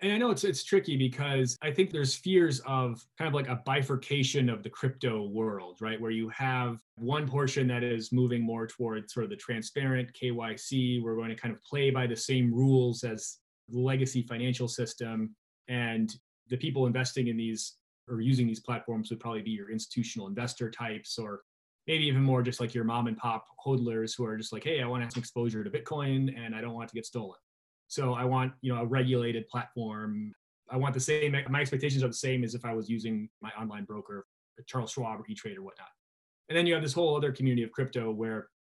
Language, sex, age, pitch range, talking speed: English, male, 30-49, 115-135 Hz, 220 wpm